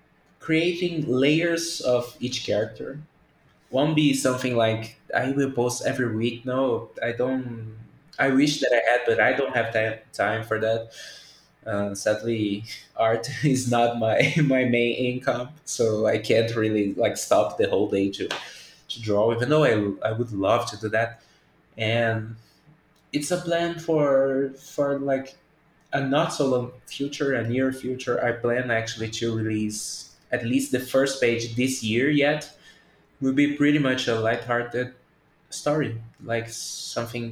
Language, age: English, 20-39